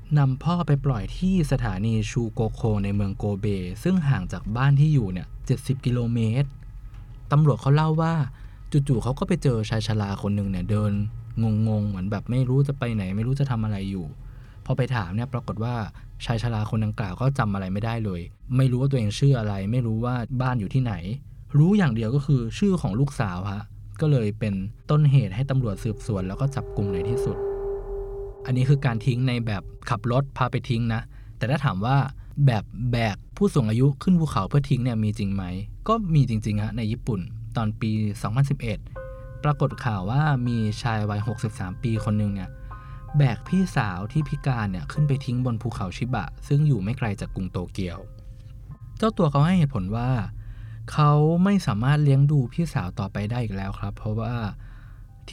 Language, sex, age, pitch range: Thai, male, 20-39, 105-135 Hz